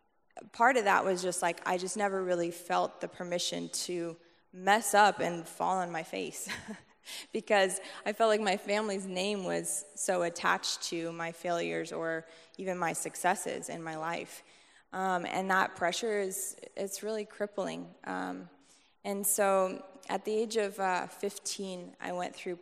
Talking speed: 160 wpm